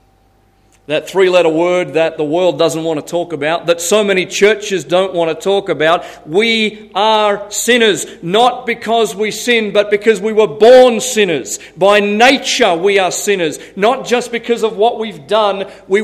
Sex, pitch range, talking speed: male, 175-220 Hz, 170 wpm